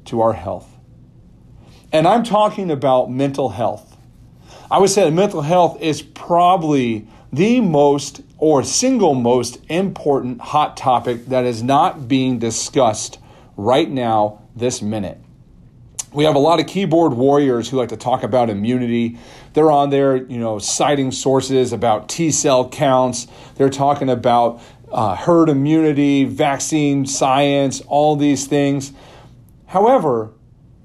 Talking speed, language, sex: 135 wpm, English, male